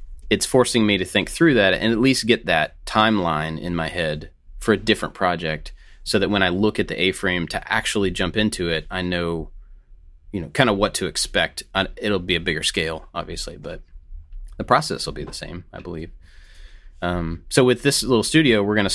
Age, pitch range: 30-49, 80-100 Hz